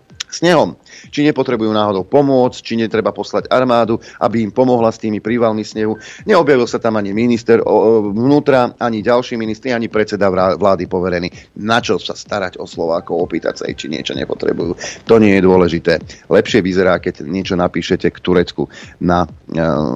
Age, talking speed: 30-49, 160 wpm